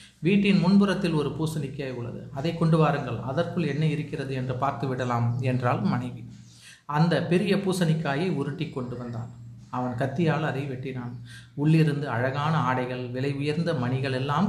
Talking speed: 135 wpm